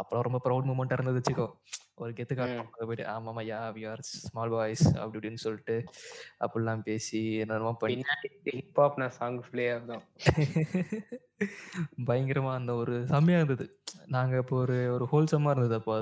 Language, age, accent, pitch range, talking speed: Tamil, 20-39, native, 110-130 Hz, 35 wpm